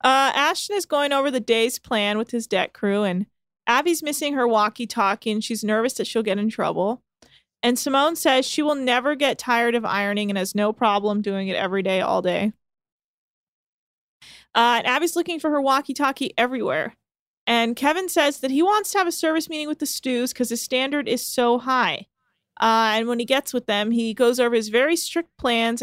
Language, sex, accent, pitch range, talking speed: English, female, American, 205-275 Hz, 200 wpm